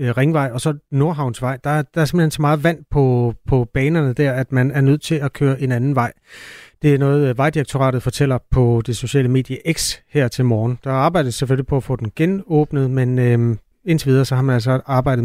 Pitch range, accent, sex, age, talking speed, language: 120-140 Hz, native, male, 30-49, 215 wpm, Danish